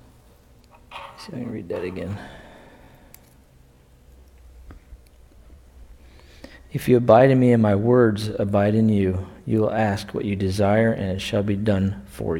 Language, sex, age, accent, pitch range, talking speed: English, male, 40-59, American, 100-115 Hz, 135 wpm